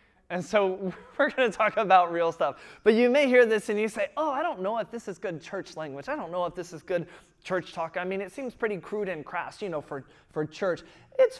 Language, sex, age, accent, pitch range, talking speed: English, male, 20-39, American, 150-195 Hz, 265 wpm